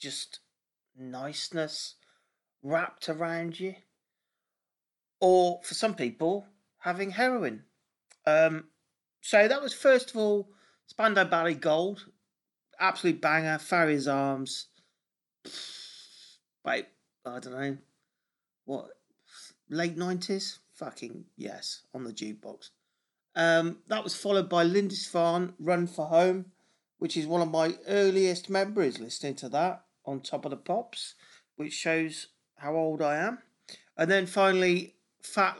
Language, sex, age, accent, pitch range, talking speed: English, male, 40-59, British, 150-195 Hz, 120 wpm